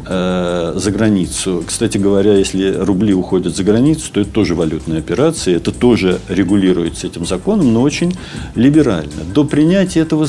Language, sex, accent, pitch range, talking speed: Russian, male, native, 95-125 Hz, 150 wpm